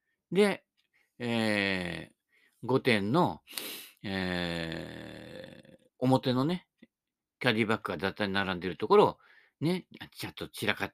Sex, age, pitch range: male, 50-69, 95-150 Hz